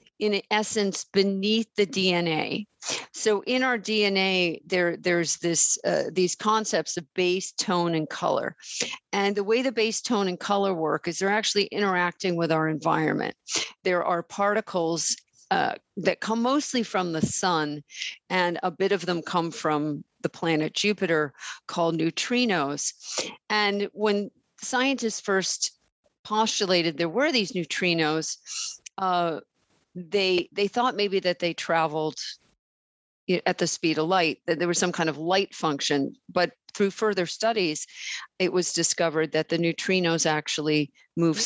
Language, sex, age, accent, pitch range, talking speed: English, female, 50-69, American, 165-210 Hz, 145 wpm